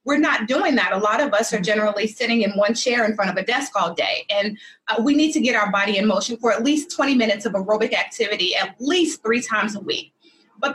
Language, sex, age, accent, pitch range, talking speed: English, female, 30-49, American, 210-265 Hz, 255 wpm